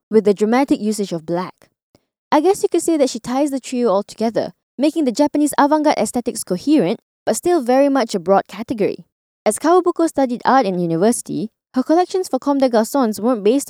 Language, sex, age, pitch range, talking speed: English, female, 20-39, 215-300 Hz, 195 wpm